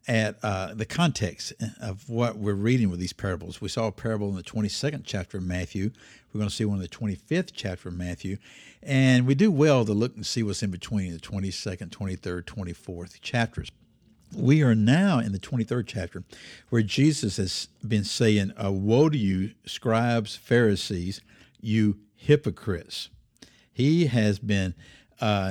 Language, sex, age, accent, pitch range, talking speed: English, male, 60-79, American, 100-125 Hz, 170 wpm